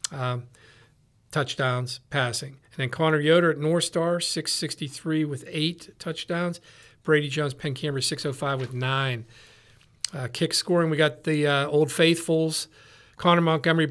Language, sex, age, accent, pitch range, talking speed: English, male, 50-69, American, 130-165 Hz, 140 wpm